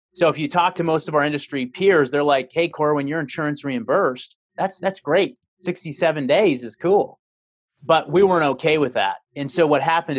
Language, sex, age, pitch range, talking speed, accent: English, male, 30-49, 120-150 Hz, 200 wpm, American